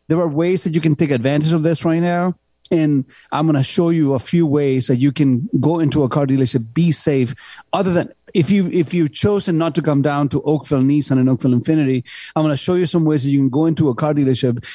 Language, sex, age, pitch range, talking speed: English, male, 40-59, 130-160 Hz, 255 wpm